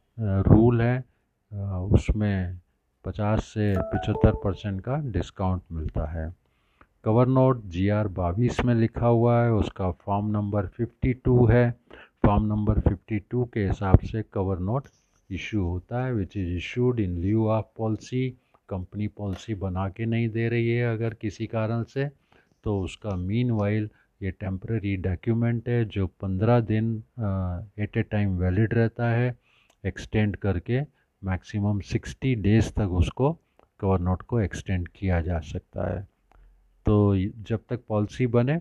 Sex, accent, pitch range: male, native, 95-115 Hz